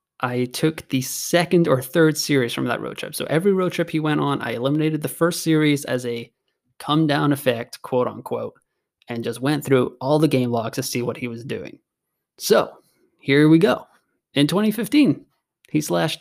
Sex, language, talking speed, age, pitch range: male, English, 195 wpm, 20-39, 130-190 Hz